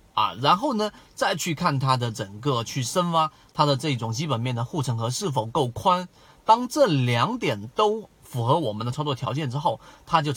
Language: Chinese